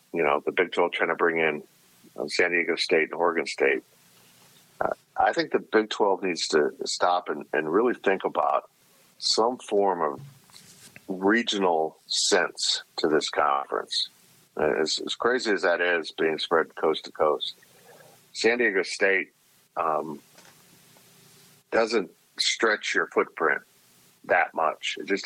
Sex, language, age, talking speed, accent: male, English, 50-69, 145 wpm, American